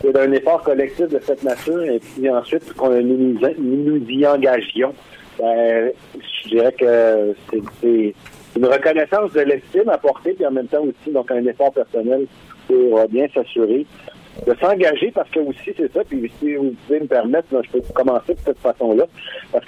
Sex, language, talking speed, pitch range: male, French, 185 wpm, 125-170 Hz